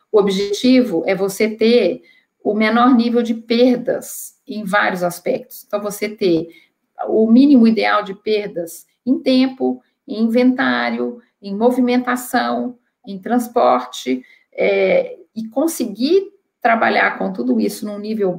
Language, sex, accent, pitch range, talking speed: Portuguese, female, Brazilian, 195-250 Hz, 120 wpm